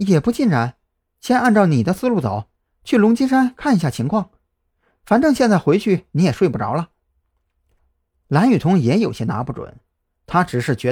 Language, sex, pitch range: Chinese, male, 110-180 Hz